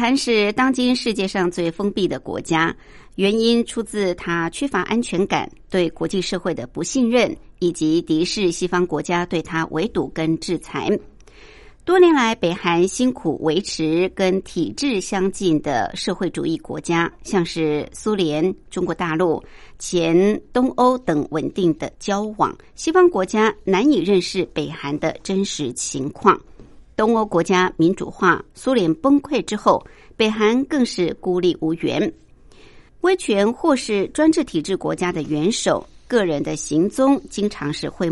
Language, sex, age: Chinese, male, 60-79